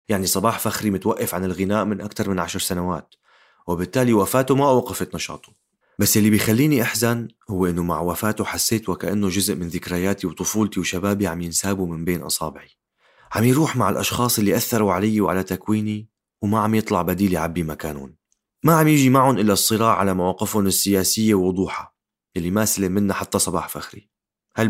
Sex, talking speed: male, 170 wpm